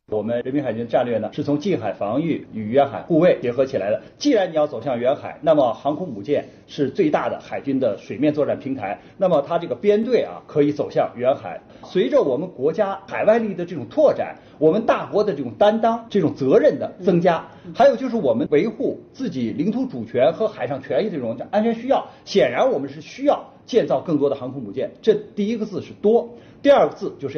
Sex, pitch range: male, 145-230 Hz